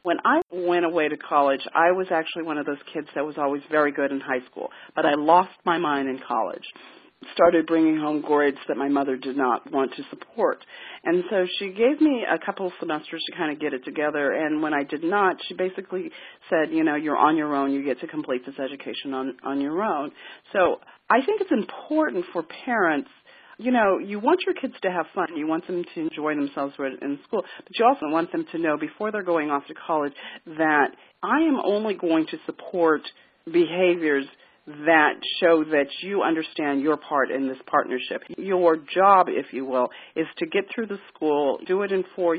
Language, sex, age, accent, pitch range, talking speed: English, female, 40-59, American, 145-195 Hz, 210 wpm